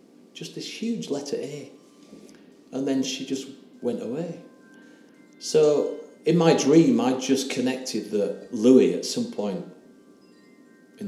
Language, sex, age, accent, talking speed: English, male, 40-59, British, 130 wpm